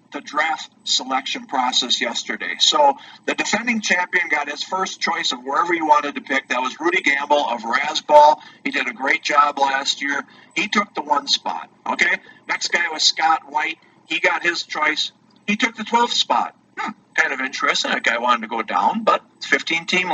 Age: 50-69